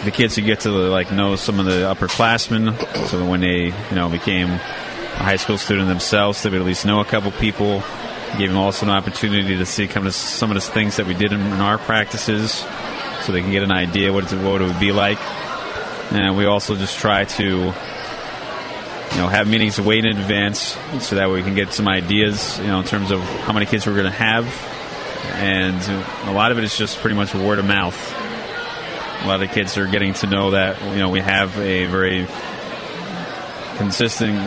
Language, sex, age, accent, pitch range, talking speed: English, male, 30-49, American, 95-105 Hz, 210 wpm